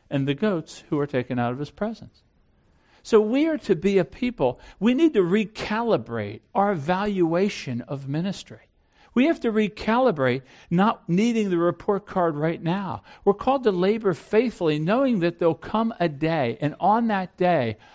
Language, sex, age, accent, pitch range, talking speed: English, male, 50-69, American, 140-210 Hz, 170 wpm